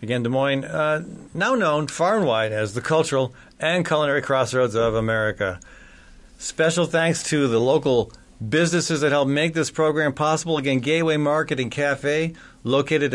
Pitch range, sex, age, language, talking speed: 120-155 Hz, male, 40-59, English, 160 wpm